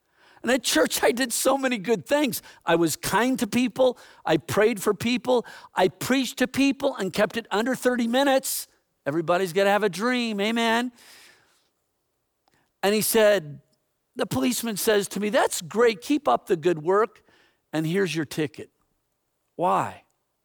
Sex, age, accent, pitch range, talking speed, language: male, 50-69, American, 175-250 Hz, 160 wpm, English